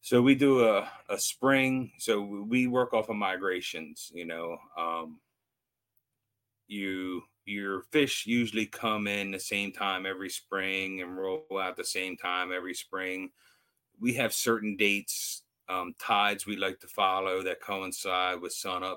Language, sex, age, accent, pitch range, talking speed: English, male, 30-49, American, 90-105 Hz, 150 wpm